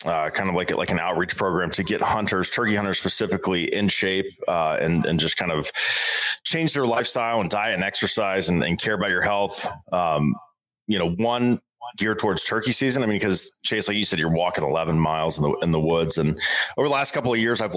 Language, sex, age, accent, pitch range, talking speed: English, male, 30-49, American, 95-125 Hz, 230 wpm